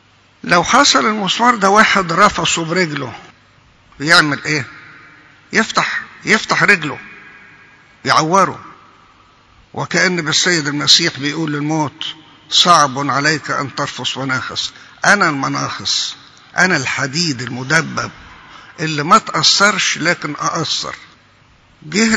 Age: 50-69